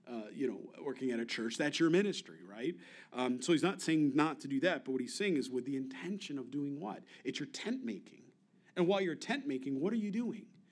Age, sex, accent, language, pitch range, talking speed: 40-59, male, American, English, 165-220 Hz, 245 wpm